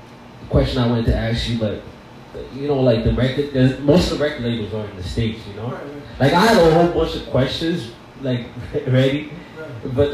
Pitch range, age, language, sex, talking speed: 110-130 Hz, 20-39, English, male, 205 wpm